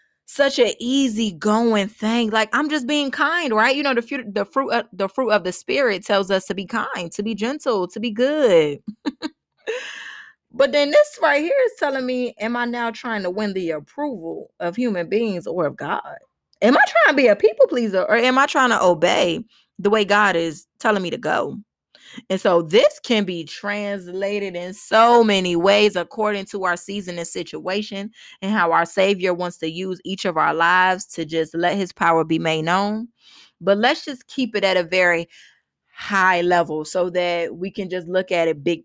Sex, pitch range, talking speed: female, 180-240 Hz, 205 wpm